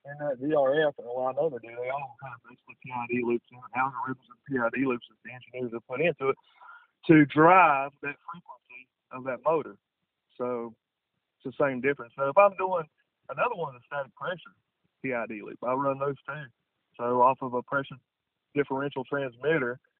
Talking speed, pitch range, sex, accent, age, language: 190 wpm, 120-140 Hz, male, American, 30-49, English